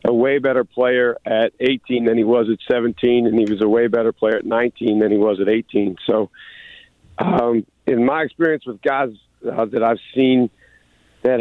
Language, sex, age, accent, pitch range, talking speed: English, male, 50-69, American, 115-130 Hz, 195 wpm